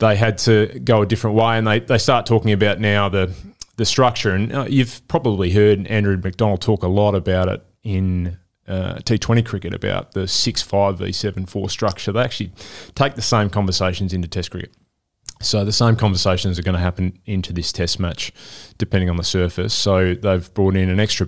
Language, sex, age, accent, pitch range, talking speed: English, male, 20-39, Australian, 95-110 Hz, 195 wpm